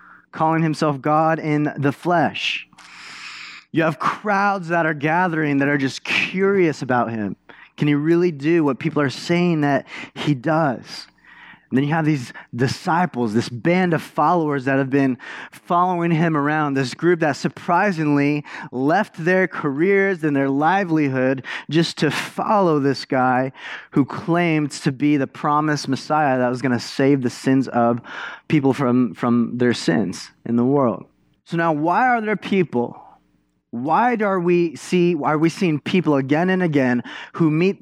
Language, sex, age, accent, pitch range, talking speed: English, male, 20-39, American, 135-175 Hz, 160 wpm